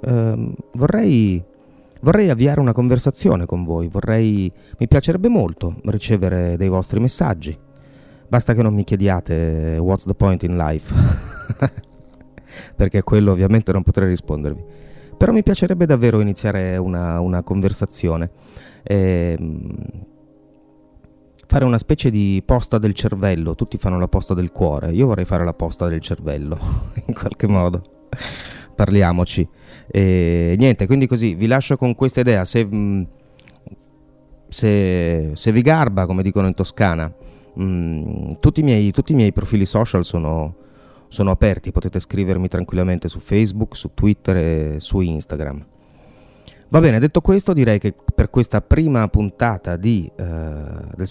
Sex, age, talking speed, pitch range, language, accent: male, 30-49, 135 wpm, 90-120 Hz, Italian, native